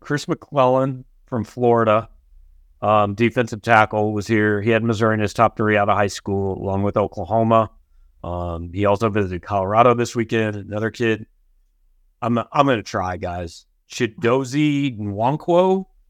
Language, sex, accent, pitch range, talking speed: English, male, American, 100-125 Hz, 155 wpm